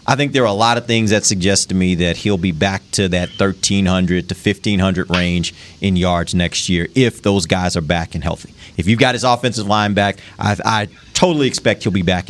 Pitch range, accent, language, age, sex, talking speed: 95-125 Hz, American, English, 30-49, male, 230 wpm